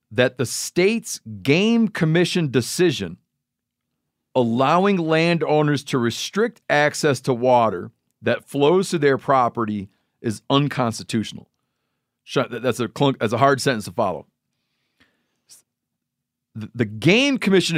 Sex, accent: male, American